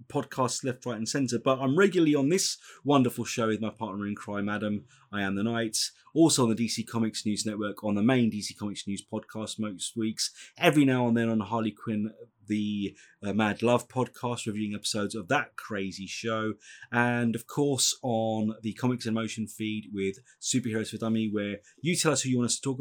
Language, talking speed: English, 210 wpm